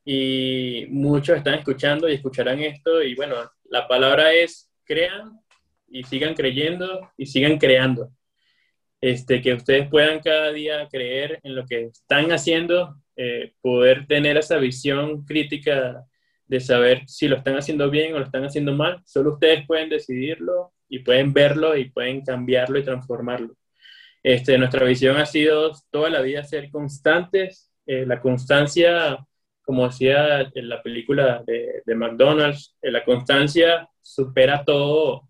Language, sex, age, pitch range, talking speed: Spanish, male, 20-39, 130-155 Hz, 150 wpm